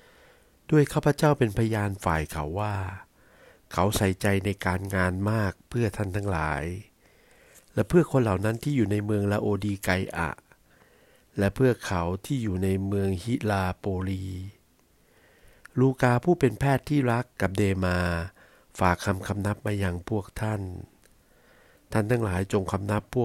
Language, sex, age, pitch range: Thai, male, 60-79, 95-110 Hz